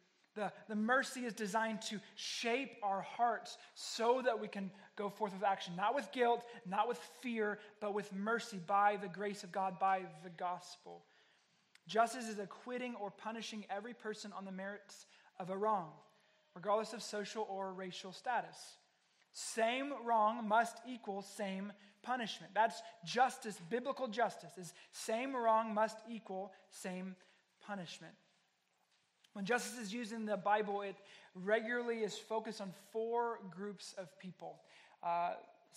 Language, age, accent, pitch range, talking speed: English, 20-39, American, 190-225 Hz, 145 wpm